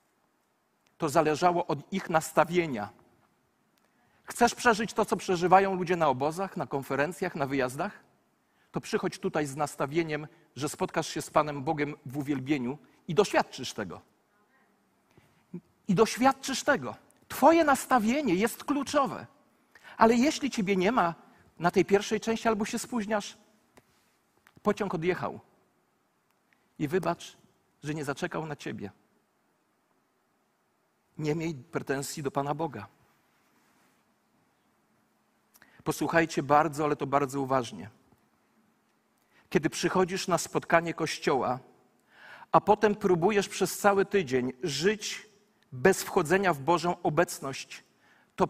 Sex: male